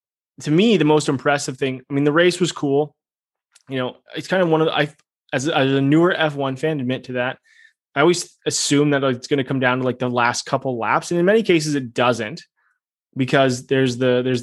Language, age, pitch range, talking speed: English, 20-39, 125-155 Hz, 230 wpm